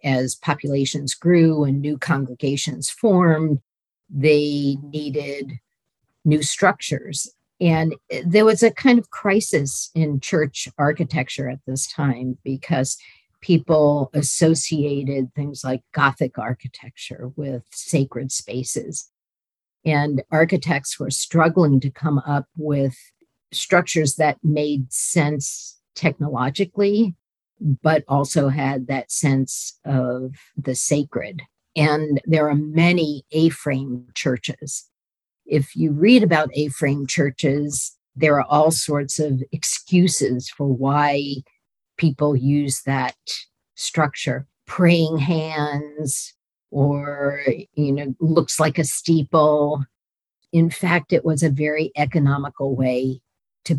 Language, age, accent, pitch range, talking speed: English, 50-69, American, 135-160 Hz, 110 wpm